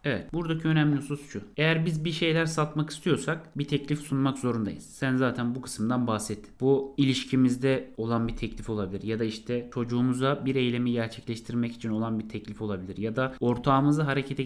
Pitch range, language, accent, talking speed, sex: 120-155 Hz, Turkish, native, 175 wpm, male